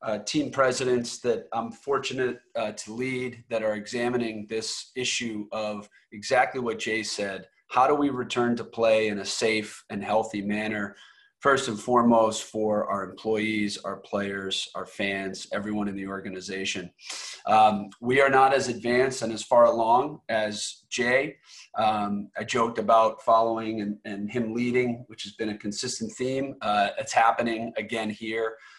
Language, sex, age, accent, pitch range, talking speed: English, male, 30-49, American, 105-120 Hz, 160 wpm